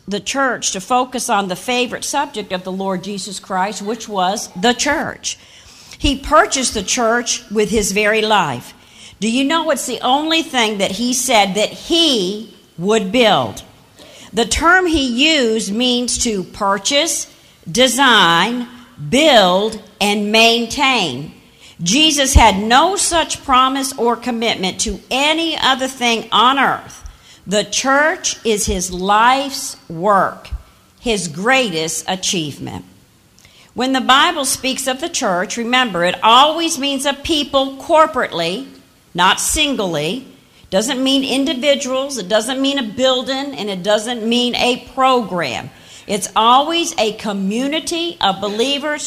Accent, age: American, 50-69